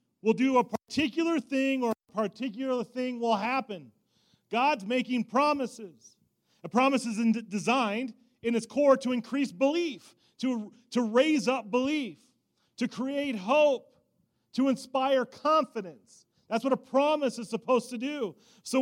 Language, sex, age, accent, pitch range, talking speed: English, male, 40-59, American, 220-270 Hz, 140 wpm